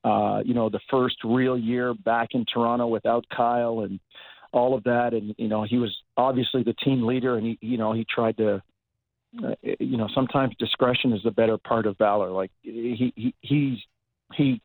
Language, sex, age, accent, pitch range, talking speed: English, male, 50-69, American, 110-125 Hz, 195 wpm